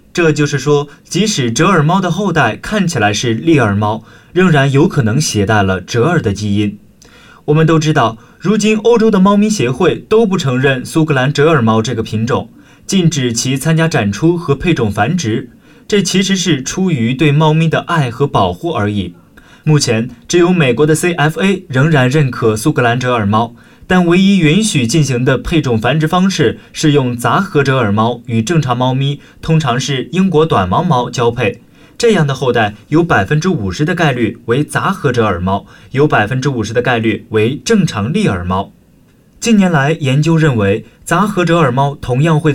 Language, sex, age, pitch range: Chinese, male, 20-39, 115-165 Hz